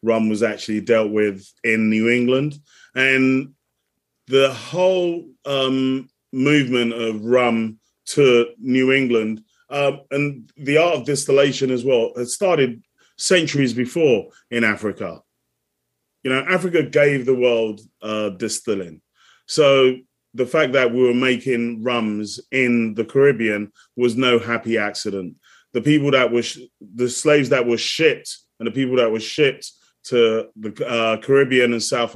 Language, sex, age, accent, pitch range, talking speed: English, male, 30-49, British, 115-135 Hz, 145 wpm